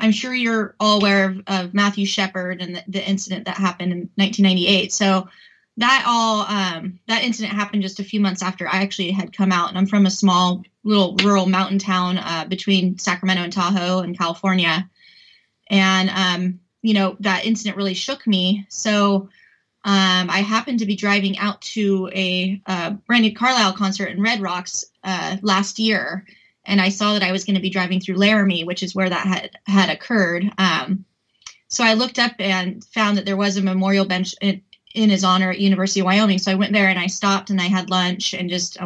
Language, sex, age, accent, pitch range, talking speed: English, female, 20-39, American, 185-205 Hz, 205 wpm